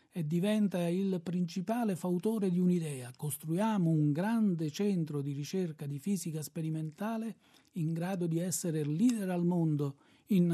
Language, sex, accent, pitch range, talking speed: Italian, male, native, 155-195 Hz, 140 wpm